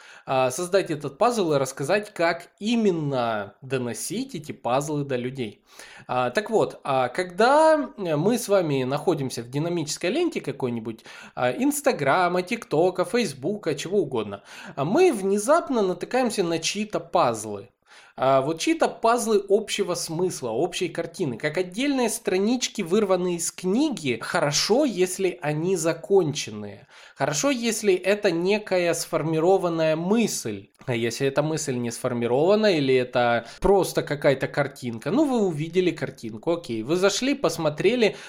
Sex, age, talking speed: male, 20-39, 120 wpm